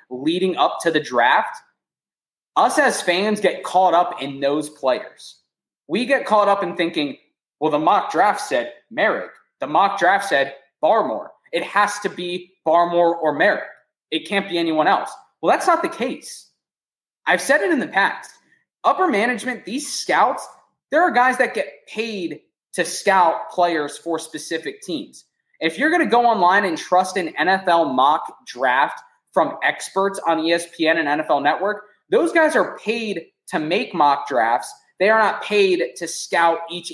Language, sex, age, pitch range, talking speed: English, male, 20-39, 170-240 Hz, 170 wpm